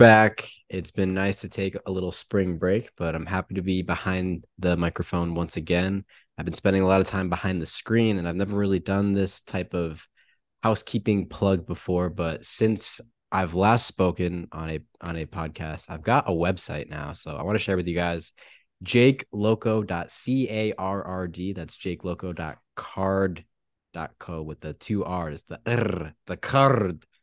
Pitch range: 85-100 Hz